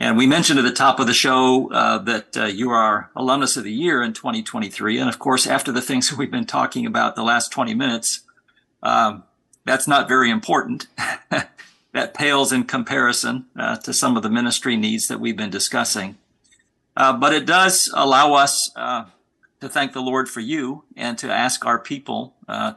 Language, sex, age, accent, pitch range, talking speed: English, male, 50-69, American, 120-150 Hz, 195 wpm